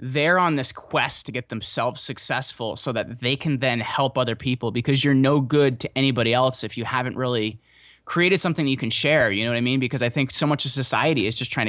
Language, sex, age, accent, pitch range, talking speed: English, male, 20-39, American, 115-140 Hz, 240 wpm